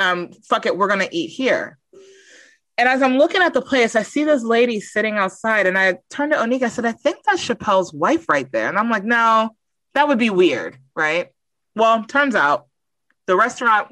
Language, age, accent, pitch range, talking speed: English, 30-49, American, 190-270 Hz, 210 wpm